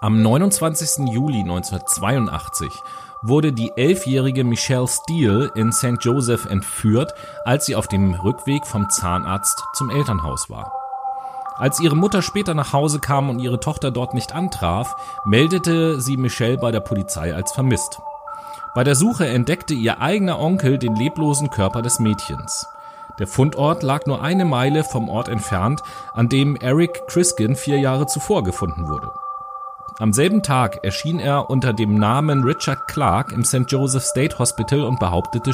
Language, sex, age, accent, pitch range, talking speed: German, male, 30-49, German, 115-165 Hz, 155 wpm